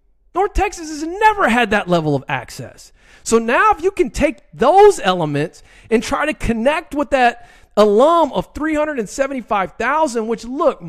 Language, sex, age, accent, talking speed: English, male, 40-59, American, 155 wpm